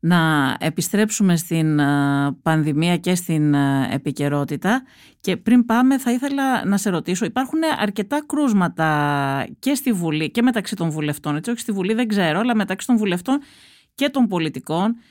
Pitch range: 160-215 Hz